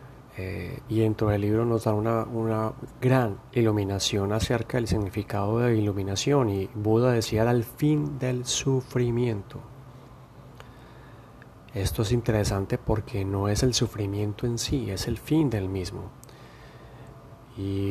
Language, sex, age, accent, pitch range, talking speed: Spanish, male, 30-49, Colombian, 105-120 Hz, 140 wpm